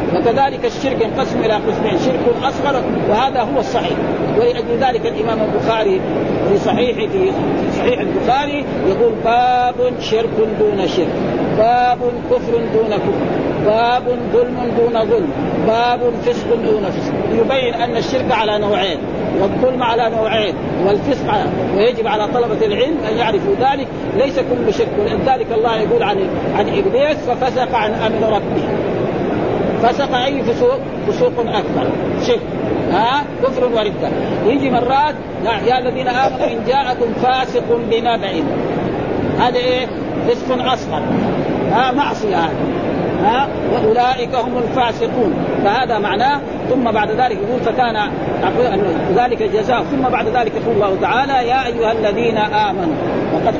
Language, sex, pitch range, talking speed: Arabic, male, 225-260 Hz, 130 wpm